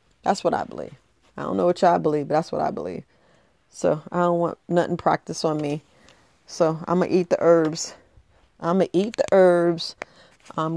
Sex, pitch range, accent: female, 165-190 Hz, American